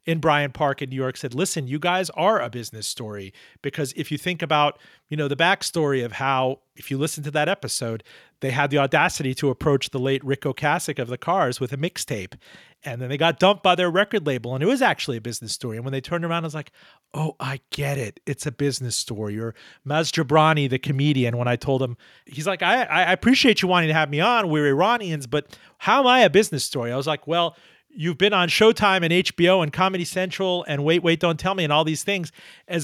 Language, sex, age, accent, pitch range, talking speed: English, male, 40-59, American, 135-175 Hz, 240 wpm